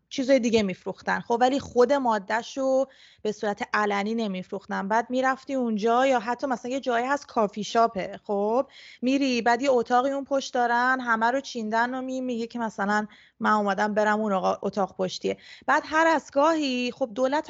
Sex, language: female, Persian